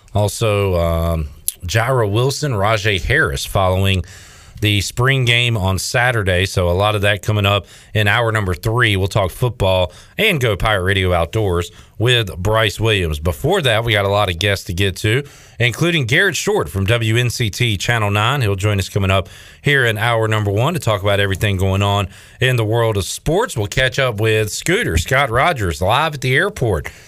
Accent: American